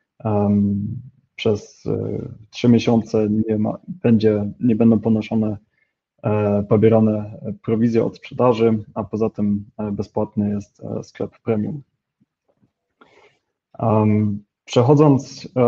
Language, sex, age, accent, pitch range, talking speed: Polish, male, 20-39, native, 110-120 Hz, 75 wpm